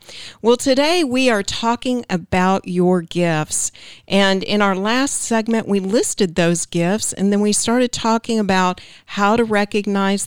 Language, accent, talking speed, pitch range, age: English, American, 150 wpm, 180-220 Hz, 50-69